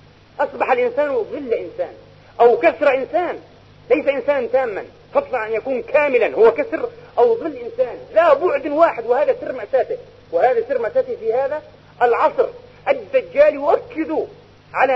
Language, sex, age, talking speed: Arabic, male, 40-59, 135 wpm